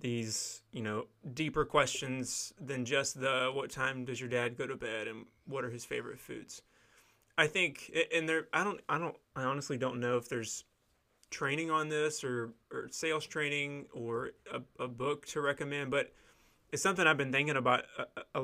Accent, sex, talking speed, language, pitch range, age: American, male, 190 wpm, English, 125-155 Hz, 20-39